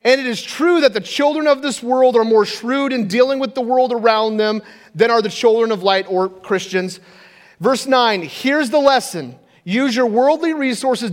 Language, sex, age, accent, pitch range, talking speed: English, male, 30-49, American, 170-235 Hz, 200 wpm